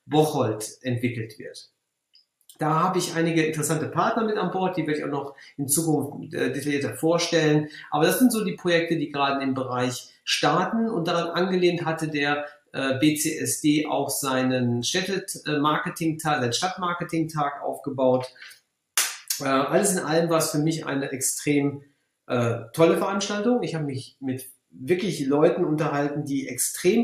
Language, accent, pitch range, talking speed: English, German, 135-170 Hz, 160 wpm